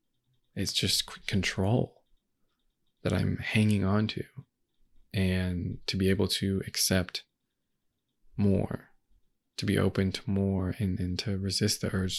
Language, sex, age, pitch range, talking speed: English, male, 20-39, 95-105 Hz, 130 wpm